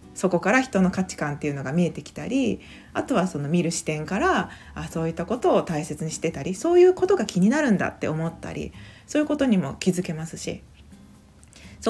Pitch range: 165-230 Hz